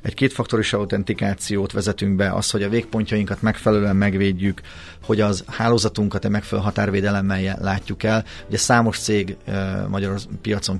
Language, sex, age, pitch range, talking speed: Hungarian, male, 30-49, 95-115 Hz, 140 wpm